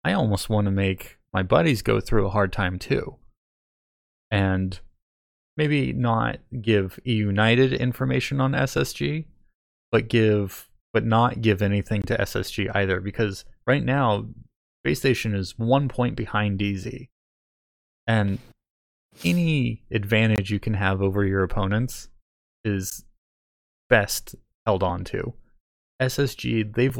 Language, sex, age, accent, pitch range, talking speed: English, male, 20-39, American, 95-115 Hz, 120 wpm